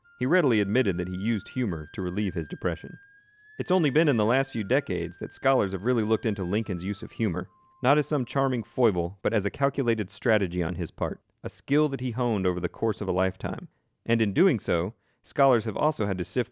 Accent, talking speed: American, 230 wpm